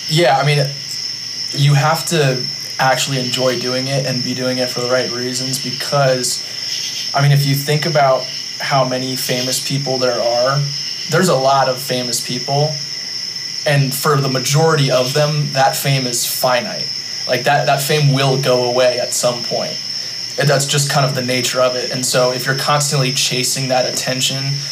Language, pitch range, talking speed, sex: English, 125-140 Hz, 175 wpm, male